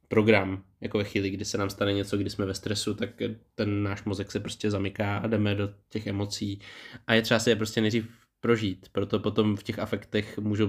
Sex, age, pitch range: male, 20-39, 105-115 Hz